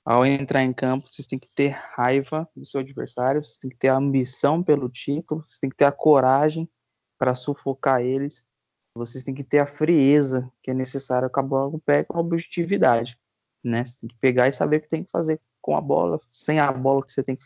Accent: Brazilian